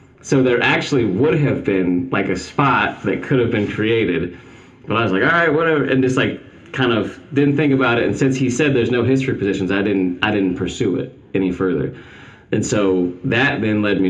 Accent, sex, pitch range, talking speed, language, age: American, male, 90-120 Hz, 220 wpm, English, 30-49